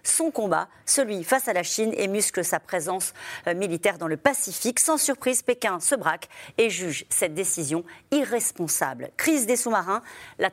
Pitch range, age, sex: 175-245 Hz, 40-59, female